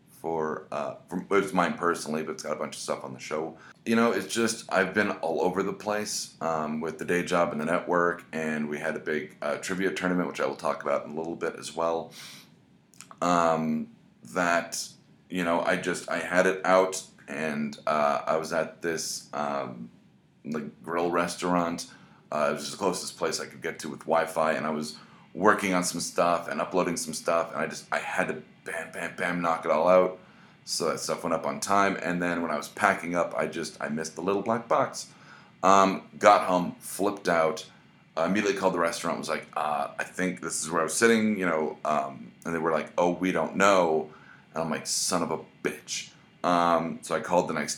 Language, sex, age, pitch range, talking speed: English, male, 30-49, 80-95 Hz, 220 wpm